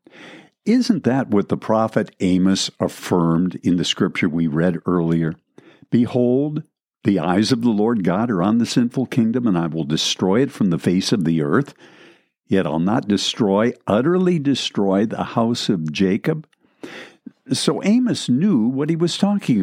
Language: English